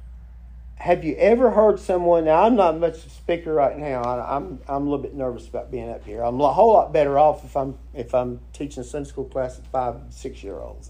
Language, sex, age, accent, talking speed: English, male, 50-69, American, 240 wpm